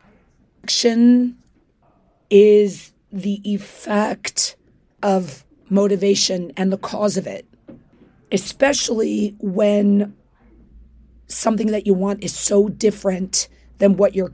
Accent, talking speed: American, 95 wpm